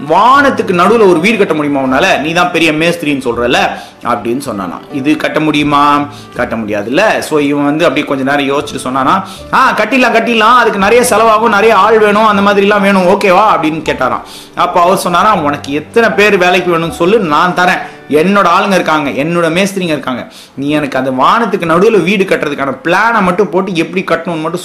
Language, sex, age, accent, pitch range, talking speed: Tamil, male, 30-49, native, 145-195 Hz, 105 wpm